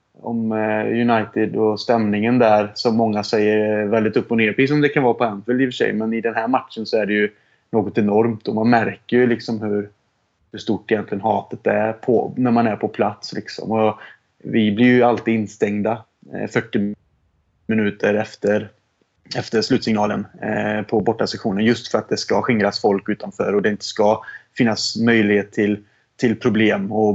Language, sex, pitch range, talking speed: Swedish, male, 105-120 Hz, 180 wpm